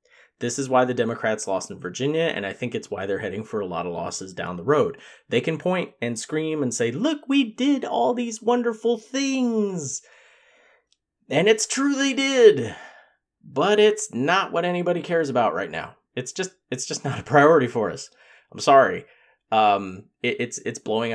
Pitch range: 125-190 Hz